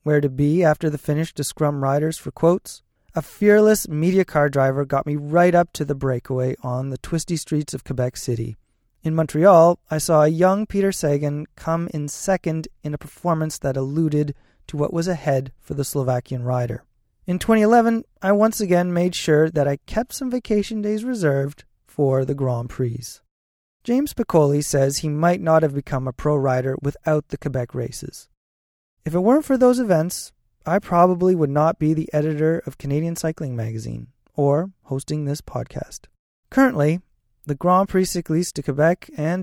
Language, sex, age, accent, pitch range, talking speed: English, male, 30-49, American, 135-175 Hz, 175 wpm